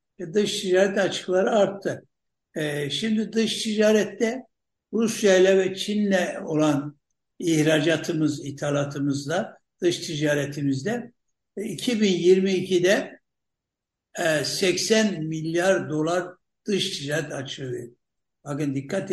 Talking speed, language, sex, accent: 85 wpm, Turkish, male, native